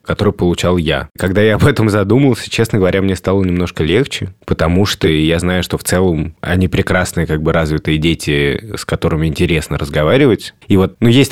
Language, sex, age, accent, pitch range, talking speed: Russian, male, 20-39, native, 85-105 Hz, 185 wpm